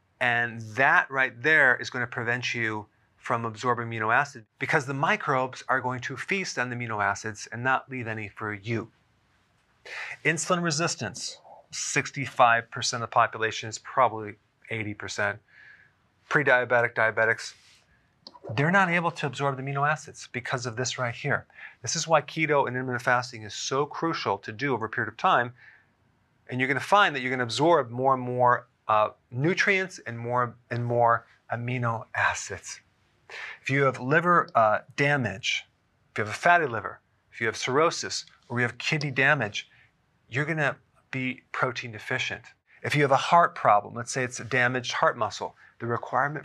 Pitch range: 115-135 Hz